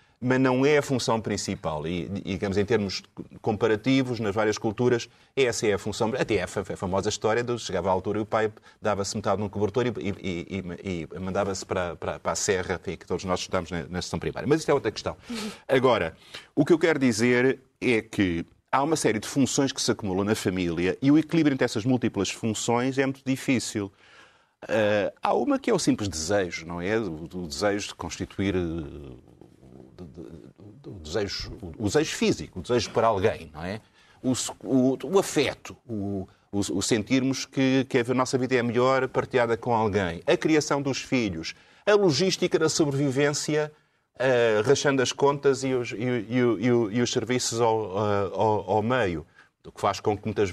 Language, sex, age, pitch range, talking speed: Portuguese, male, 30-49, 100-130 Hz, 180 wpm